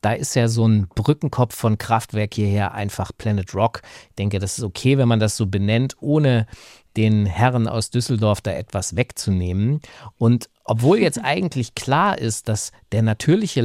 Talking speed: 170 wpm